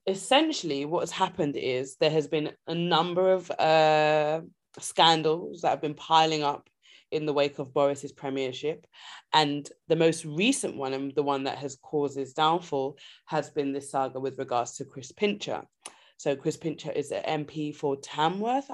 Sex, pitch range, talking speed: female, 145-180 Hz, 175 wpm